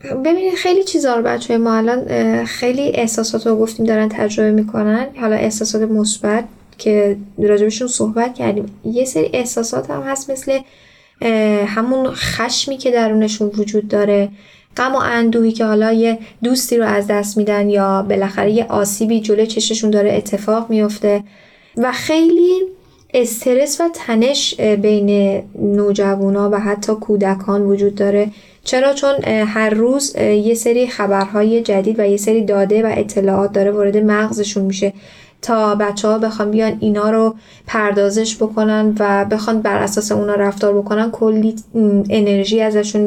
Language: Persian